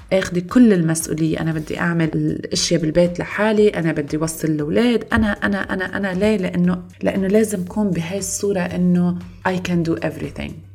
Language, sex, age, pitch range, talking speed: Arabic, female, 20-39, 160-190 Hz, 155 wpm